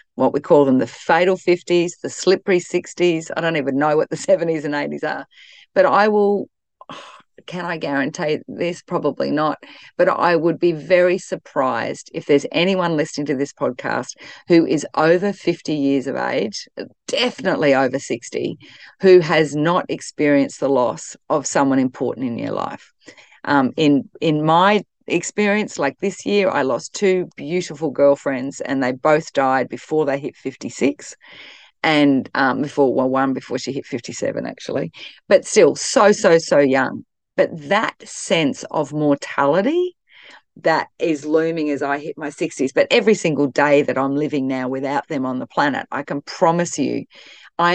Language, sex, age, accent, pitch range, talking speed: English, female, 40-59, Australian, 145-180 Hz, 165 wpm